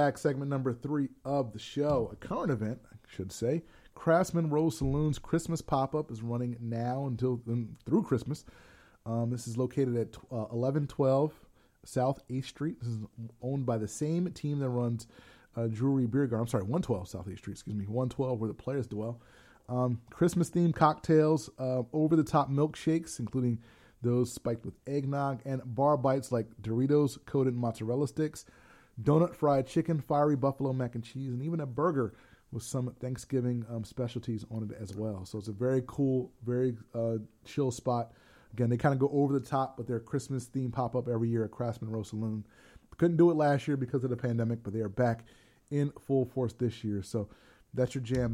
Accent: American